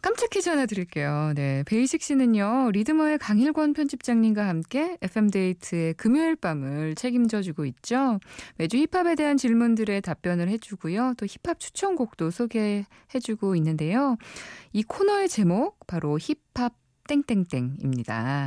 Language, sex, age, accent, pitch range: Korean, female, 20-39, native, 155-250 Hz